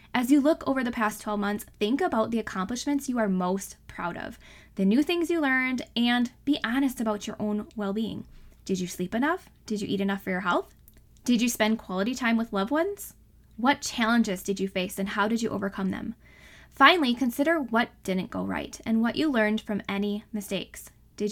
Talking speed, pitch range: 205 wpm, 210-280 Hz